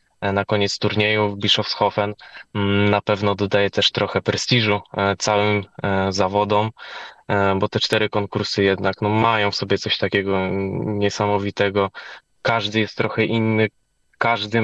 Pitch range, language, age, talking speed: 100-105 Hz, Polish, 10-29, 120 wpm